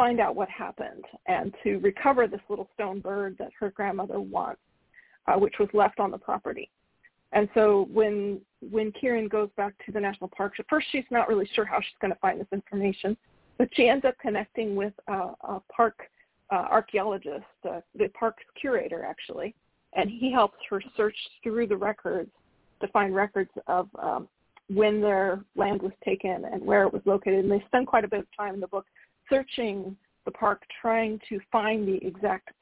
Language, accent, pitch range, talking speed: English, American, 200-230 Hz, 190 wpm